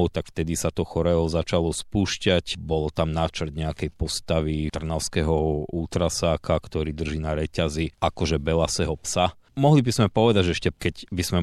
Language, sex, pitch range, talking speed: Slovak, male, 80-90 Hz, 160 wpm